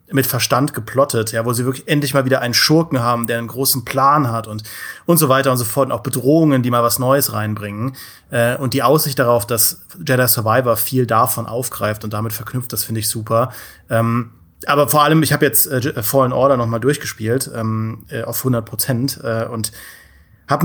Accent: German